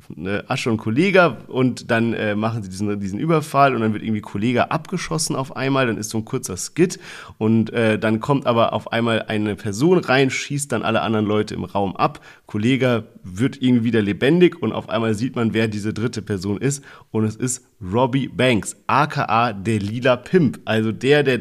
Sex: male